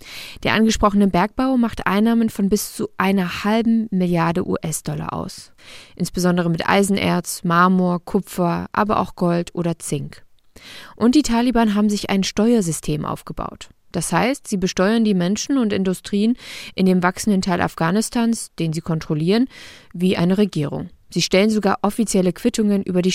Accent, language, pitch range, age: German, German, 175-210 Hz, 20-39